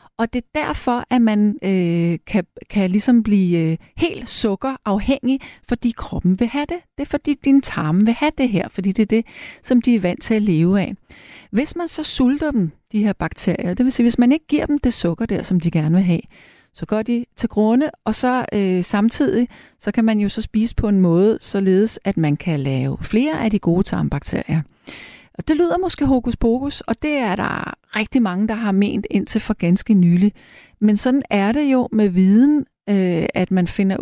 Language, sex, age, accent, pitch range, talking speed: Danish, female, 40-59, native, 180-245 Hz, 215 wpm